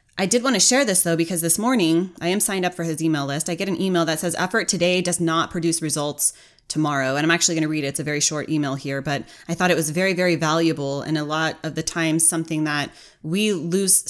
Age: 20-39